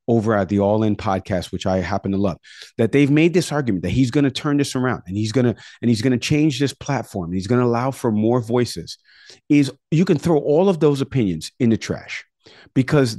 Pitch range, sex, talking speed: 105-140 Hz, male, 245 wpm